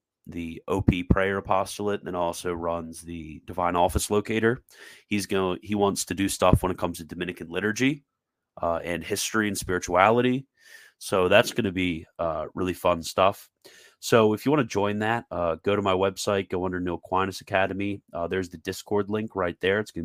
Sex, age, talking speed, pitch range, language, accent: male, 30-49, 190 wpm, 85-105 Hz, English, American